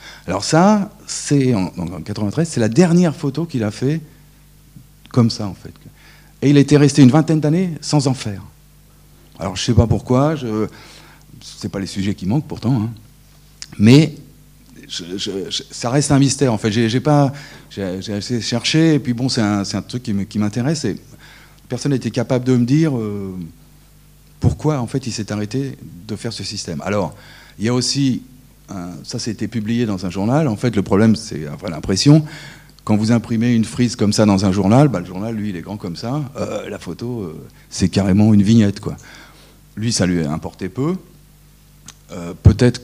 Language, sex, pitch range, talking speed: French, male, 100-140 Hz, 200 wpm